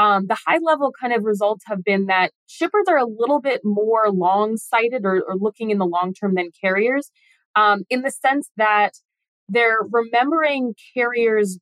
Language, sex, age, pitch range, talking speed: English, female, 20-39, 185-230 Hz, 175 wpm